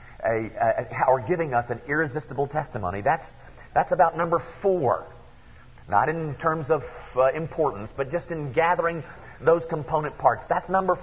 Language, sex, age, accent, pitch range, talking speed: English, male, 40-59, American, 125-185 Hz, 160 wpm